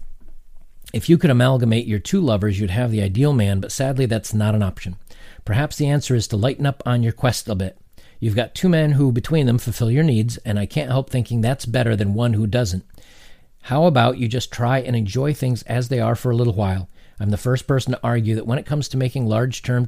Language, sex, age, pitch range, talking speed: English, male, 50-69, 105-135 Hz, 240 wpm